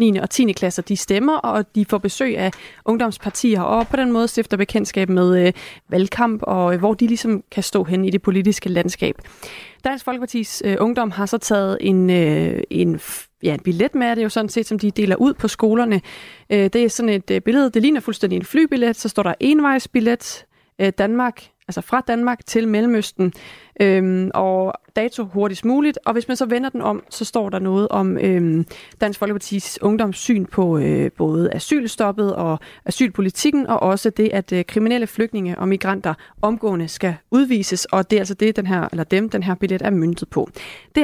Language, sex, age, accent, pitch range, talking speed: Danish, female, 30-49, native, 190-235 Hz, 195 wpm